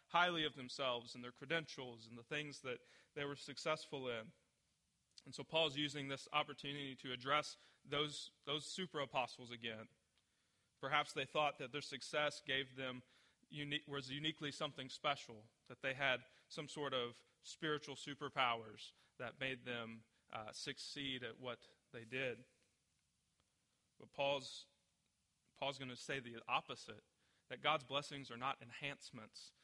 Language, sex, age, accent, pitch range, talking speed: English, male, 30-49, American, 120-145 Hz, 140 wpm